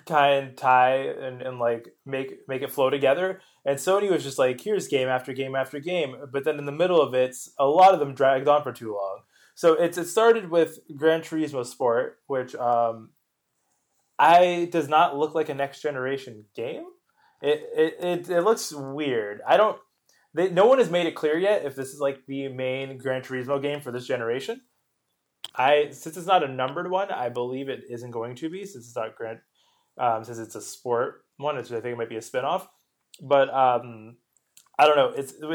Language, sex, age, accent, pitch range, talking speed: English, male, 20-39, American, 130-165 Hz, 205 wpm